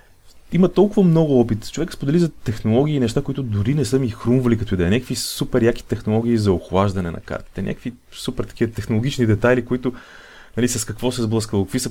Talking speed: 190 wpm